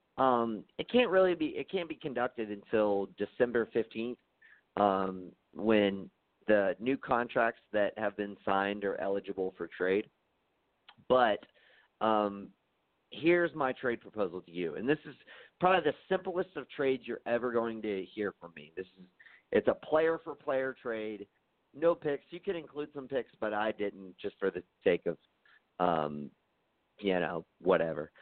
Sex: male